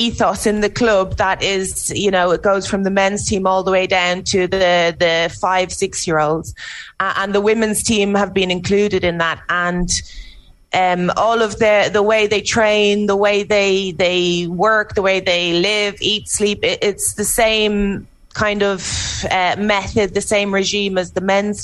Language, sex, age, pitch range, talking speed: English, female, 20-39, 180-205 Hz, 185 wpm